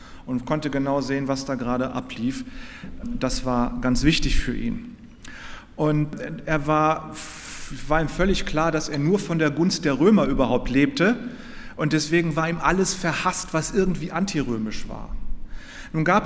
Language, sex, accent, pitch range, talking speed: German, male, German, 140-180 Hz, 160 wpm